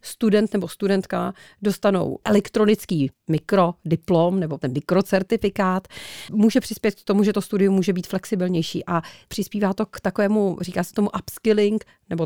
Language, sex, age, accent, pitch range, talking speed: Czech, female, 40-59, native, 185-220 Hz, 140 wpm